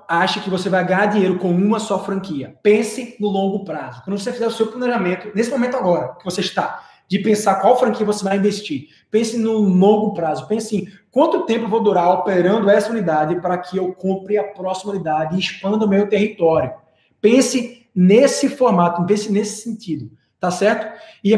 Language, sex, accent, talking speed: Portuguese, male, Brazilian, 190 wpm